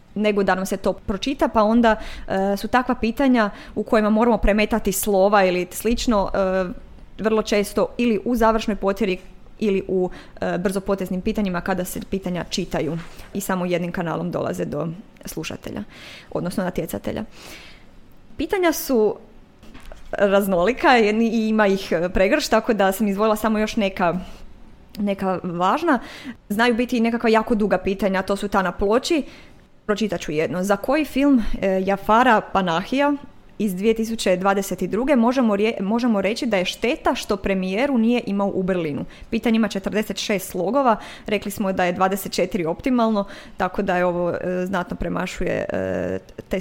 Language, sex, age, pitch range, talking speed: Croatian, female, 20-39, 190-230 Hz, 145 wpm